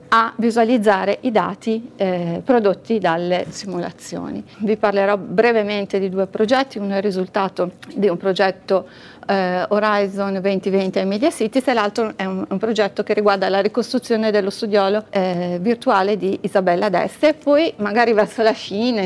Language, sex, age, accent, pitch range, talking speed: Italian, female, 40-59, native, 200-245 Hz, 160 wpm